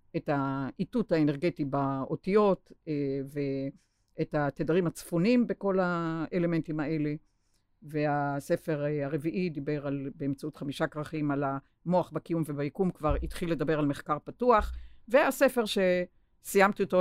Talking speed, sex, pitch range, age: 105 wpm, female, 140-180 Hz, 50-69